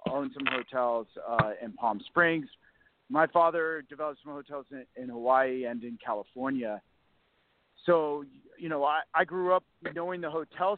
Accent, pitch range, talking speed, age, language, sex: American, 125-155 Hz, 155 wpm, 40-59, English, male